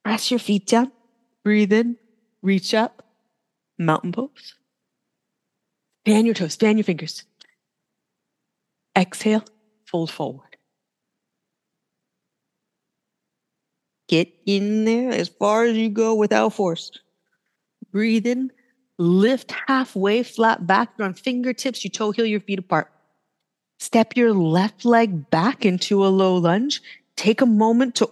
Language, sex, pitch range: English, female, 190-240 Hz